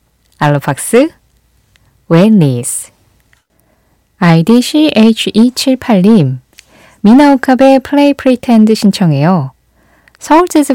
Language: Korean